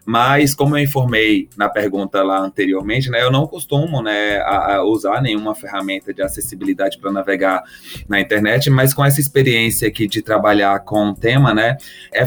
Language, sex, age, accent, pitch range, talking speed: Portuguese, male, 20-39, Brazilian, 105-135 Hz, 175 wpm